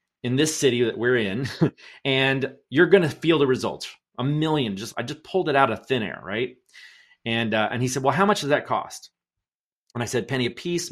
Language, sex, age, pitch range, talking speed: English, male, 30-49, 125-180 Hz, 230 wpm